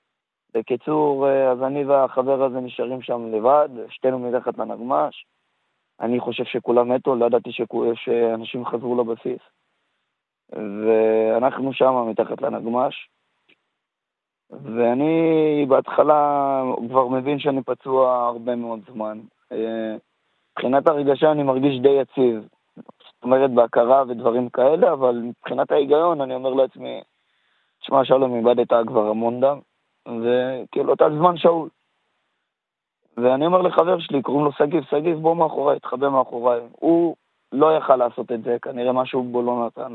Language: Hebrew